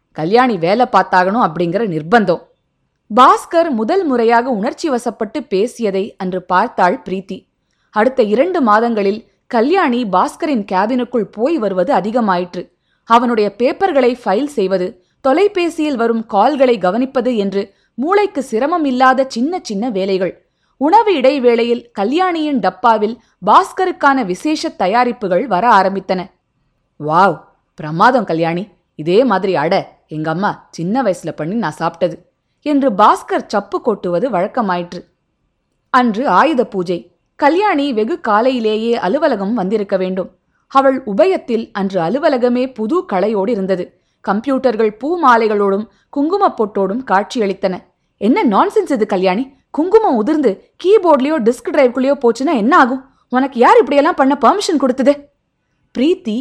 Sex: female